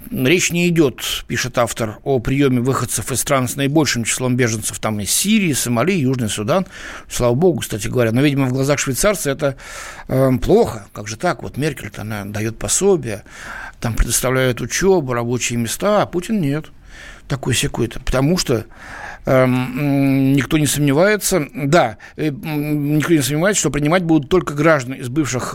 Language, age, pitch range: Russian, 60-79, 120-170 Hz